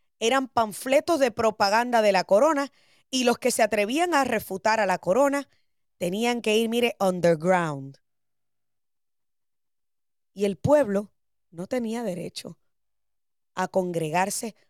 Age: 20-39